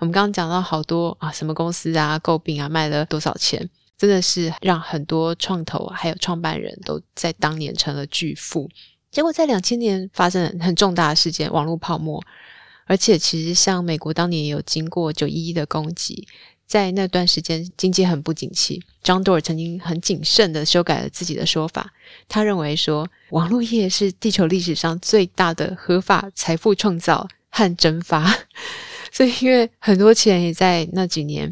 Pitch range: 155-185 Hz